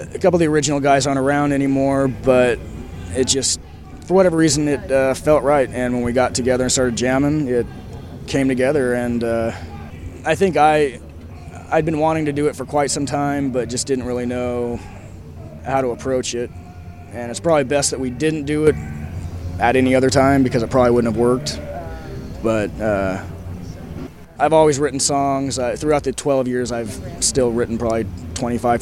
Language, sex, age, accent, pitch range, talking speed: English, male, 20-39, American, 100-135 Hz, 185 wpm